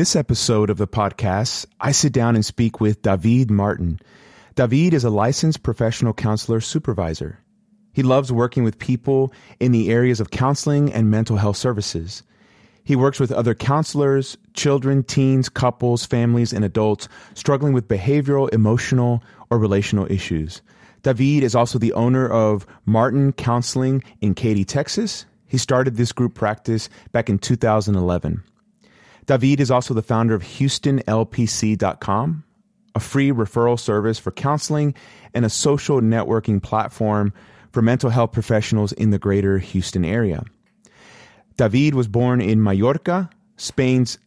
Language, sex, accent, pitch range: English, male, American, 110-135 Hz